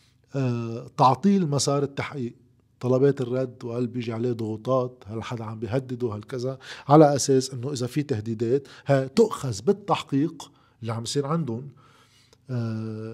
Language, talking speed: Arabic, 130 wpm